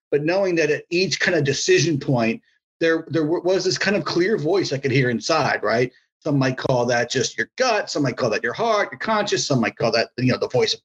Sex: male